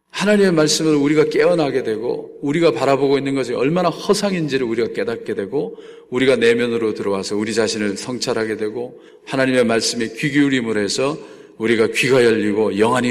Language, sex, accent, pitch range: Korean, male, native, 115-180 Hz